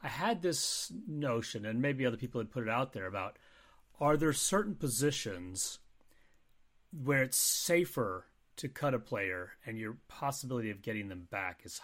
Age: 30-49